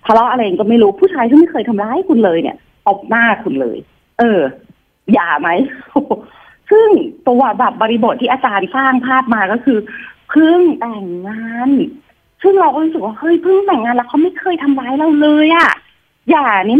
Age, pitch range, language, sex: 30-49, 210-310 Hz, Thai, female